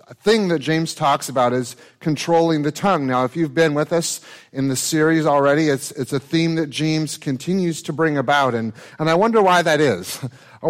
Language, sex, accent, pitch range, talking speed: English, male, American, 130-170 Hz, 210 wpm